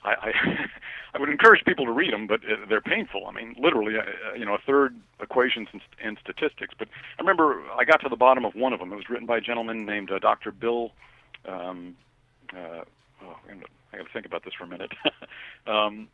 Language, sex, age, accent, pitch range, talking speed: English, male, 50-69, American, 105-130 Hz, 205 wpm